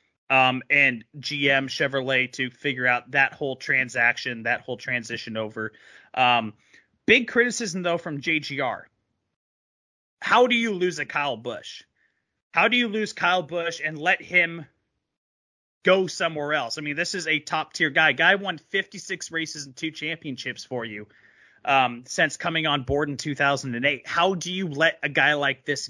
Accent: American